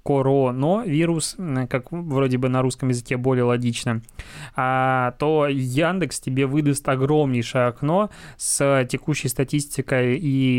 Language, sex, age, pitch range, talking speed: Russian, male, 20-39, 130-145 Hz, 110 wpm